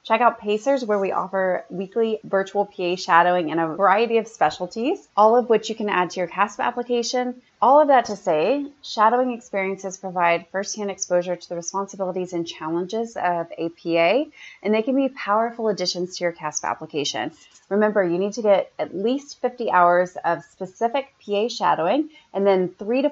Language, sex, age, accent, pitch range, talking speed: English, female, 30-49, American, 180-235 Hz, 180 wpm